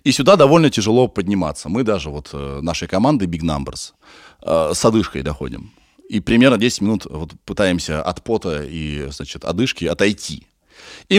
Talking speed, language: 150 wpm, Russian